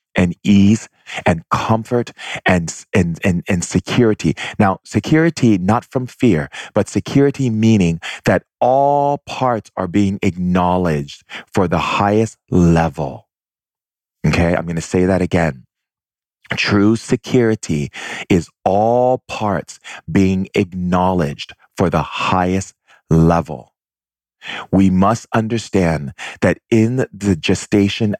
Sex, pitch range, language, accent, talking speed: male, 90-110 Hz, English, American, 110 wpm